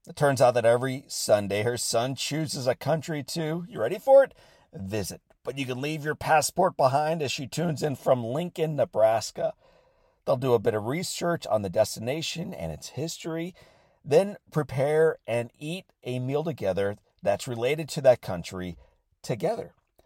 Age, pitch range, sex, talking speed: 50-69, 105-140 Hz, male, 170 wpm